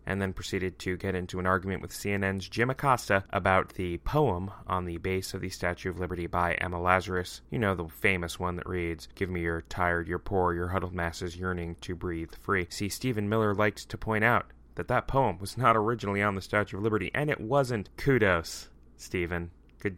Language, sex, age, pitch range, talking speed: English, male, 30-49, 90-115 Hz, 210 wpm